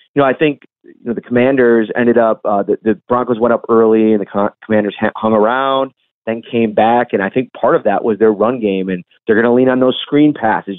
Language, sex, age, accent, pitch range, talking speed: English, male, 30-49, American, 110-130 Hz, 255 wpm